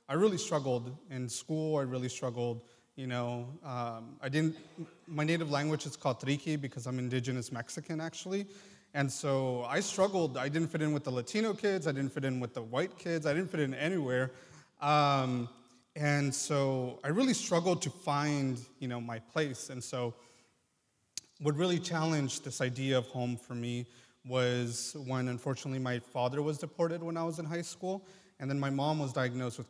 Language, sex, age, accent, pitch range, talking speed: English, male, 30-49, American, 125-160 Hz, 185 wpm